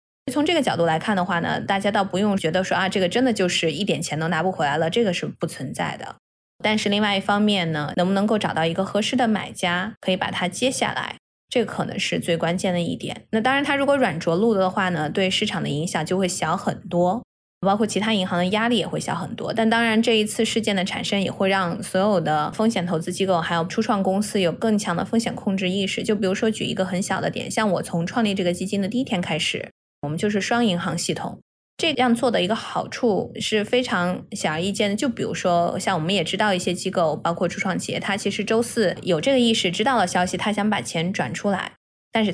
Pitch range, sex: 175-215 Hz, female